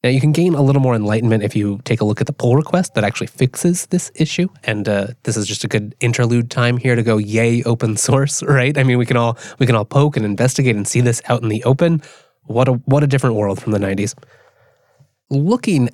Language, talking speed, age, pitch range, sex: English, 250 wpm, 20-39, 115-160 Hz, male